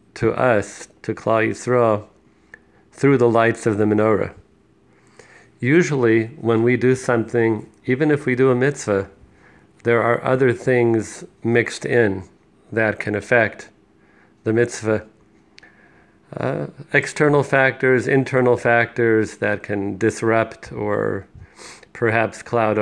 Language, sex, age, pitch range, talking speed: English, male, 40-59, 105-125 Hz, 115 wpm